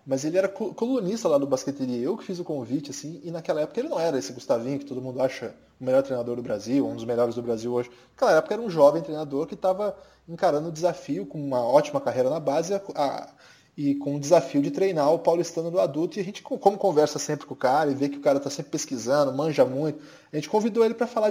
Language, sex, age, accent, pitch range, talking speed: Portuguese, male, 20-39, Brazilian, 135-195 Hz, 250 wpm